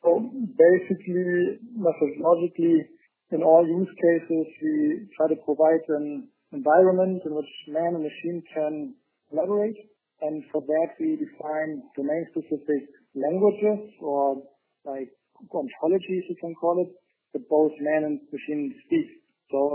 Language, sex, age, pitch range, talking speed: English, male, 50-69, 145-180 Hz, 125 wpm